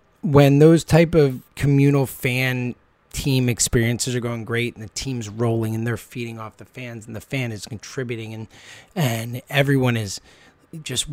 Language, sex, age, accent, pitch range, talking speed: English, male, 20-39, American, 115-145 Hz, 165 wpm